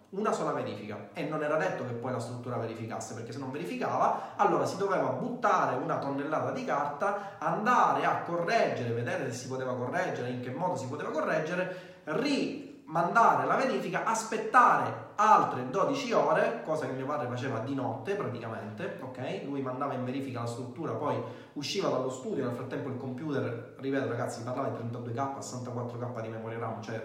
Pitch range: 120-165 Hz